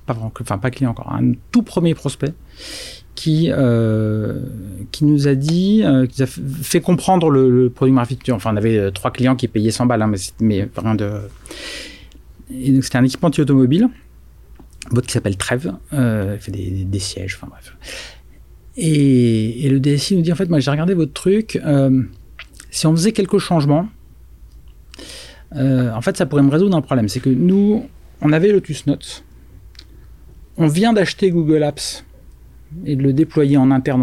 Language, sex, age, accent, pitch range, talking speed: French, male, 40-59, French, 120-155 Hz, 185 wpm